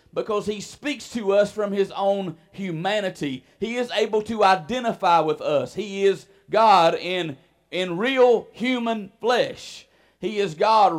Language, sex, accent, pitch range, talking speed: English, male, American, 155-205 Hz, 145 wpm